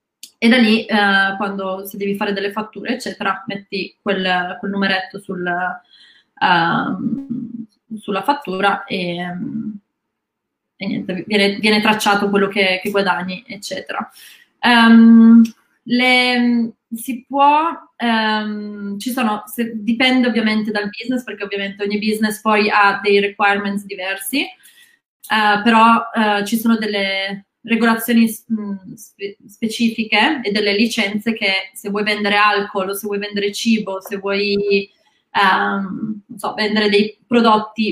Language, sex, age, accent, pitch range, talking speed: Italian, female, 20-39, native, 200-230 Hz, 130 wpm